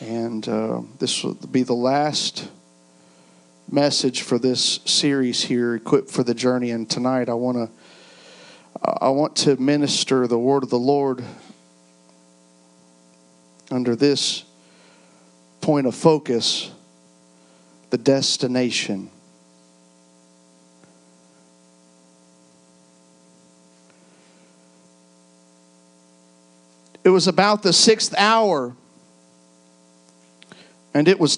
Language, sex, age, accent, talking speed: English, male, 50-69, American, 85 wpm